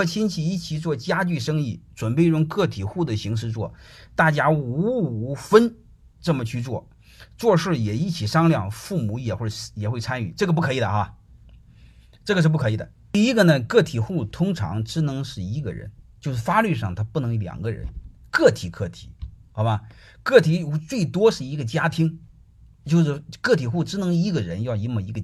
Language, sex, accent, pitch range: Chinese, male, native, 110-160 Hz